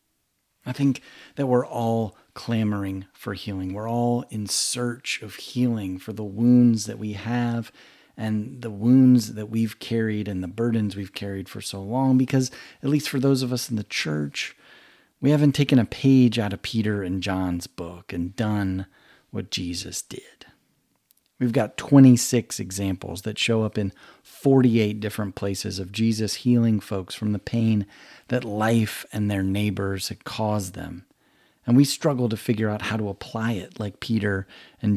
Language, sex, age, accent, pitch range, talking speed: English, male, 40-59, American, 100-125 Hz, 170 wpm